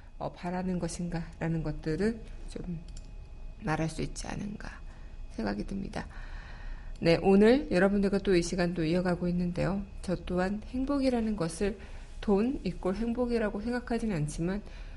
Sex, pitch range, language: female, 170-215 Hz, Korean